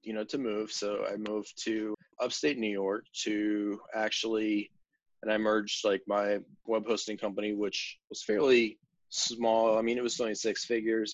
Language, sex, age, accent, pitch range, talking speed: English, male, 20-39, American, 105-115 Hz, 170 wpm